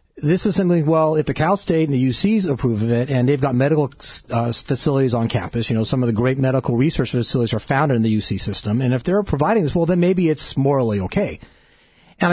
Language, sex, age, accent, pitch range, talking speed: English, male, 40-59, American, 120-155 Hz, 240 wpm